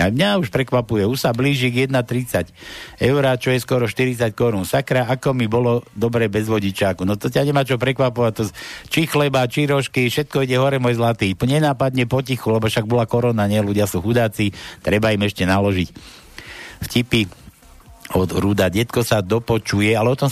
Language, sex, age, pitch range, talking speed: Slovak, male, 60-79, 105-130 Hz, 180 wpm